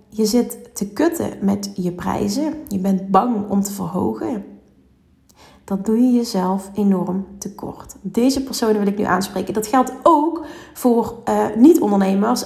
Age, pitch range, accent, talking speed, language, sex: 30-49, 200-255 Hz, Dutch, 150 wpm, Dutch, female